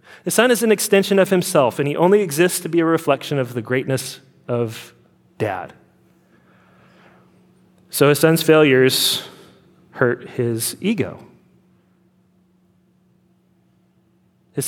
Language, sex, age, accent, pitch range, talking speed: English, male, 30-49, American, 125-170 Hz, 115 wpm